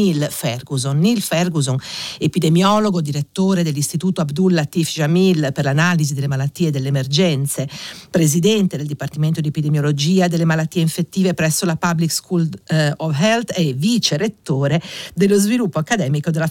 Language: Italian